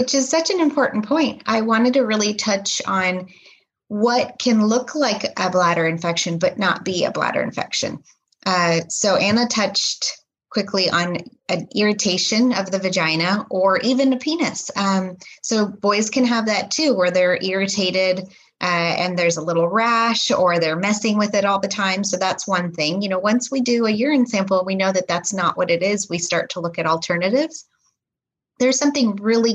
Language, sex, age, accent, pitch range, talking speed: English, female, 20-39, American, 185-230 Hz, 190 wpm